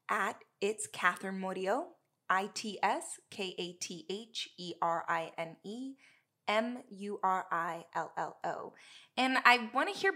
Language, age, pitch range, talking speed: English, 20-39, 185-230 Hz, 60 wpm